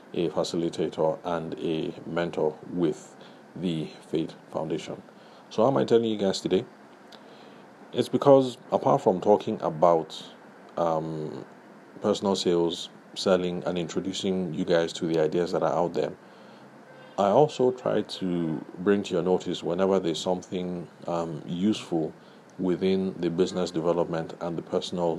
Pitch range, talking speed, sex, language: 80-95 Hz, 140 wpm, male, English